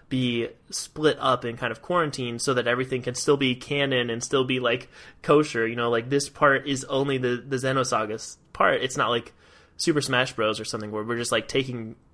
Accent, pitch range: American, 110-140 Hz